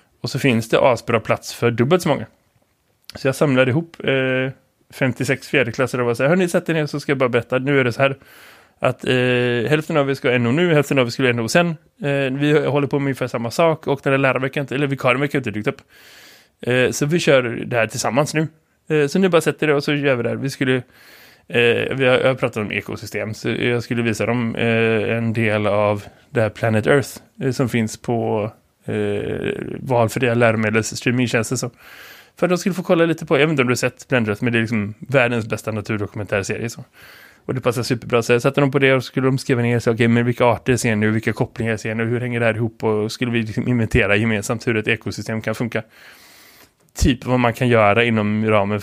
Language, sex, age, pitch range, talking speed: Swedish, male, 20-39, 110-135 Hz, 235 wpm